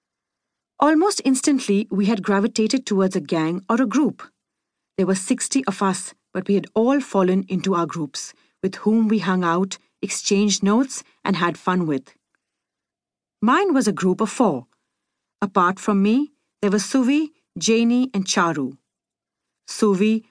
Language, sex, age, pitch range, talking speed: English, female, 40-59, 180-230 Hz, 150 wpm